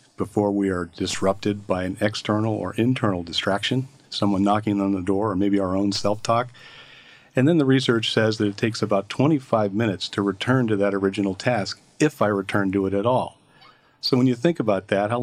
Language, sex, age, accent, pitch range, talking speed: English, male, 50-69, American, 100-120 Hz, 200 wpm